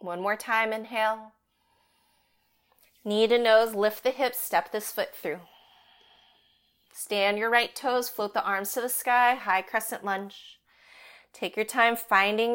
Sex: female